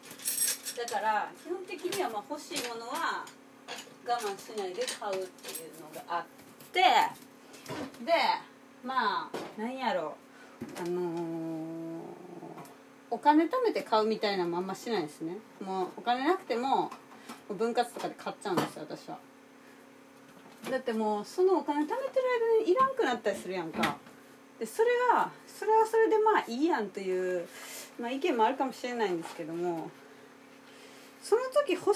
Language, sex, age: Japanese, female, 30-49